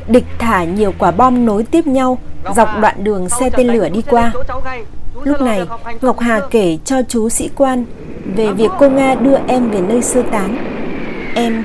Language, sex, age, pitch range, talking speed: Vietnamese, female, 20-39, 195-255 Hz, 185 wpm